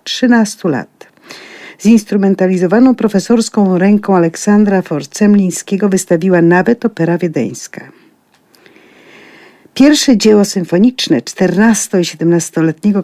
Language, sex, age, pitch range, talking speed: Polish, female, 50-69, 170-210 Hz, 80 wpm